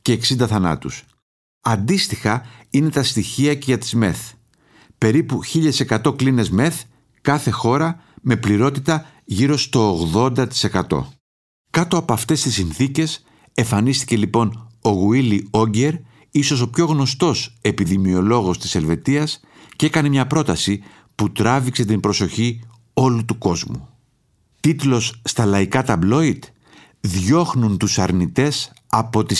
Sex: male